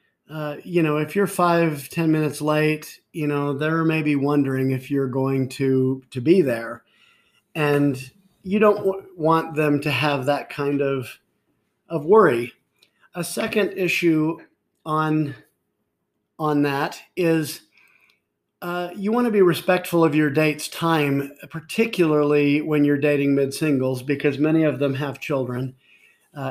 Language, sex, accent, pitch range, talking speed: English, male, American, 140-165 Hz, 145 wpm